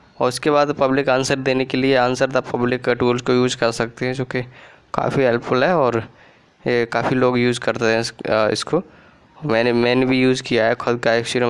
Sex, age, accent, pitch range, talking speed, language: male, 20-39, native, 115-130 Hz, 210 wpm, Hindi